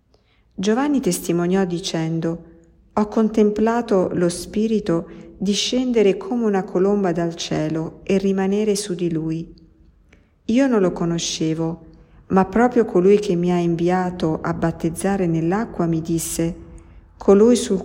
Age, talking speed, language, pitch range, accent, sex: 50-69, 120 wpm, Italian, 160-195 Hz, native, female